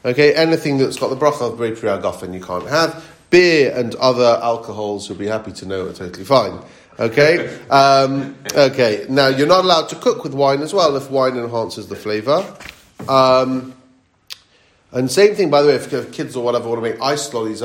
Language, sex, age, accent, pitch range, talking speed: English, male, 40-59, British, 110-140 Hz, 205 wpm